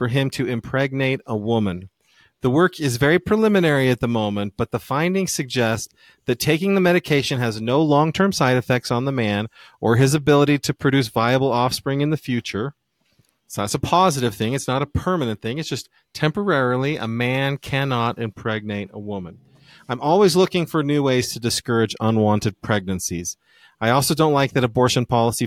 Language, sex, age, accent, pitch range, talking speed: English, male, 40-59, American, 115-145 Hz, 180 wpm